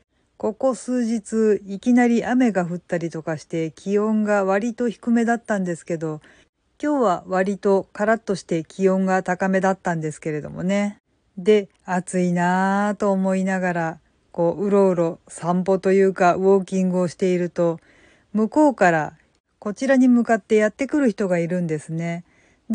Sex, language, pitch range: female, Japanese, 180-235 Hz